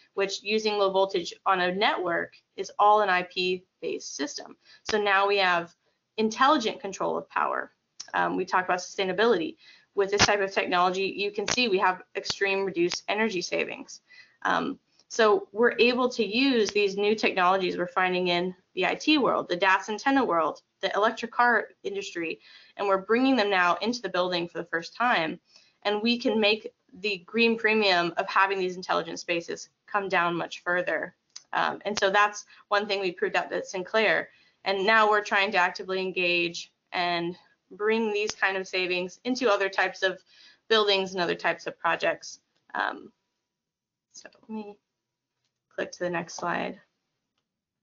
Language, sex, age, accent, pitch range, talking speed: English, female, 20-39, American, 185-220 Hz, 170 wpm